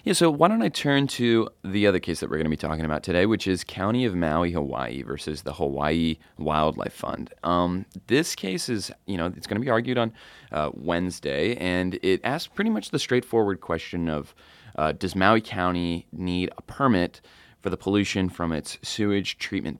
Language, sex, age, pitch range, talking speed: English, male, 30-49, 80-100 Hz, 200 wpm